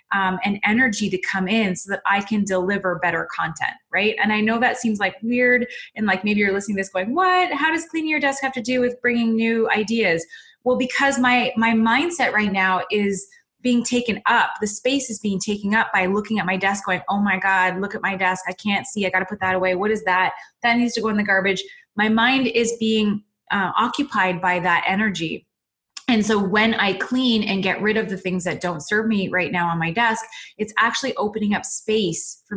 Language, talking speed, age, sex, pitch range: English, 230 wpm, 20-39, female, 190-235 Hz